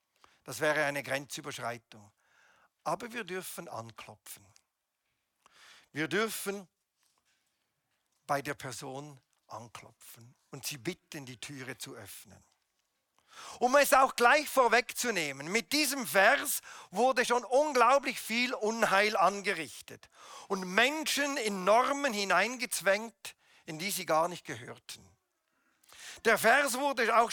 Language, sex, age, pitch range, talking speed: German, male, 50-69, 145-230 Hz, 110 wpm